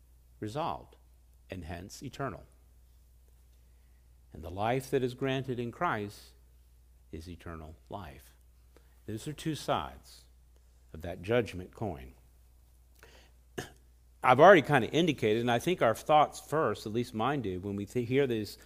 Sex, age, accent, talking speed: male, 50-69, American, 140 wpm